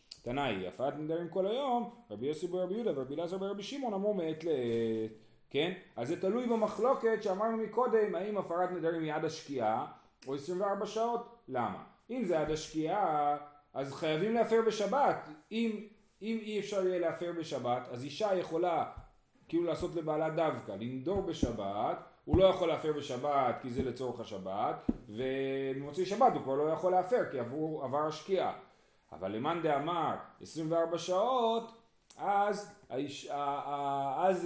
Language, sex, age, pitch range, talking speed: Hebrew, male, 30-49, 140-200 Hz, 145 wpm